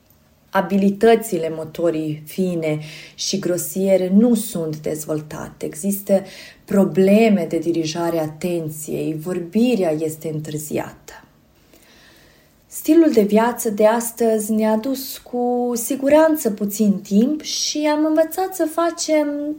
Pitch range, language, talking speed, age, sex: 195-280 Hz, Romanian, 100 wpm, 30-49, female